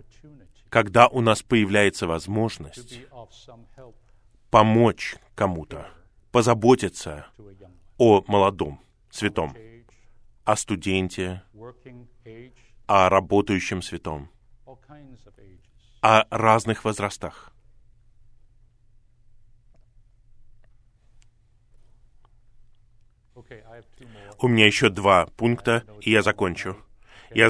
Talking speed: 60 wpm